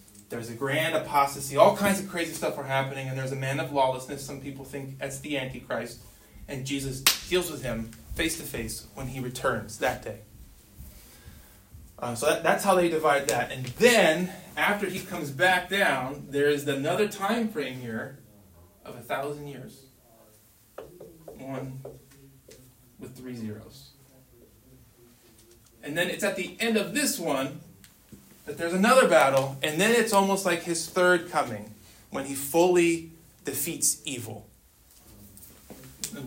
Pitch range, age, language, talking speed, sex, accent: 120-165 Hz, 20-39, English, 150 wpm, male, American